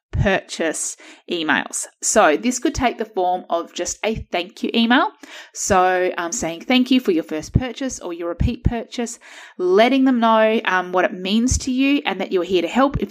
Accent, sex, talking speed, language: Australian, female, 195 wpm, English